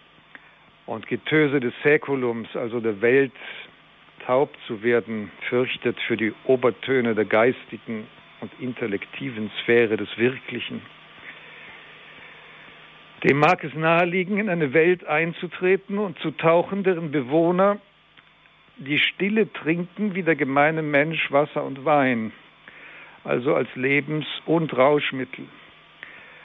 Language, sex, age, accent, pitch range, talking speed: German, male, 50-69, German, 120-155 Hz, 110 wpm